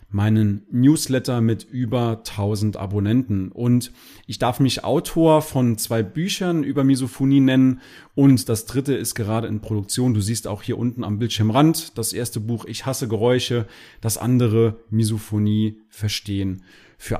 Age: 30-49